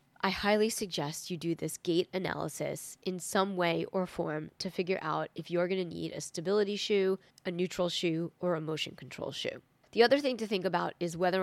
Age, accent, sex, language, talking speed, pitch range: 20-39, American, female, English, 210 wpm, 175-205 Hz